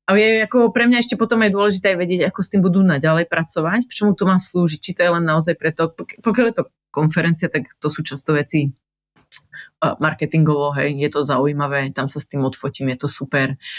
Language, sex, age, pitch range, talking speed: Slovak, female, 30-49, 140-165 Hz, 215 wpm